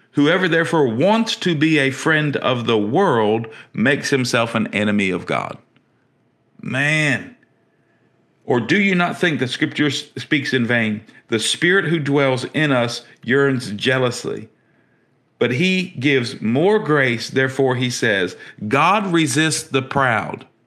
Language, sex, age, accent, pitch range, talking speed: English, male, 50-69, American, 115-155 Hz, 135 wpm